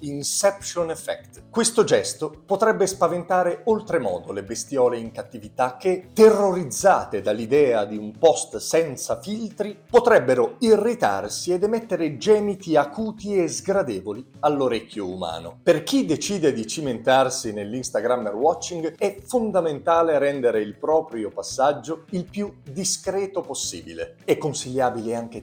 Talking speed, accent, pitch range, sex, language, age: 115 wpm, native, 130-205 Hz, male, Italian, 40-59